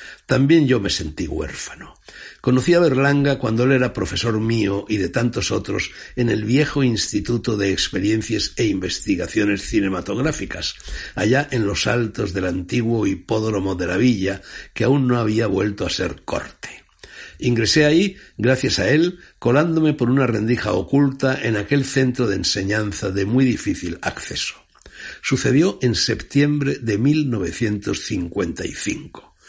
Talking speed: 140 wpm